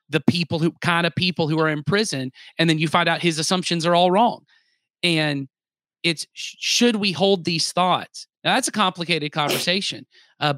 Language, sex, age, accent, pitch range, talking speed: English, male, 30-49, American, 140-175 Hz, 185 wpm